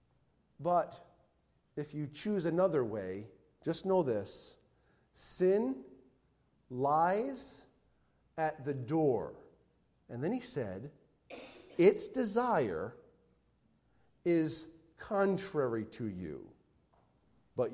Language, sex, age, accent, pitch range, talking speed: English, male, 40-59, American, 120-165 Hz, 85 wpm